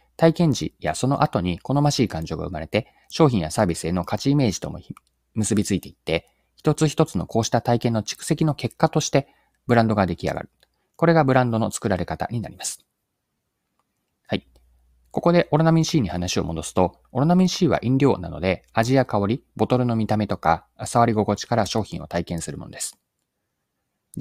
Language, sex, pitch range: Japanese, male, 90-140 Hz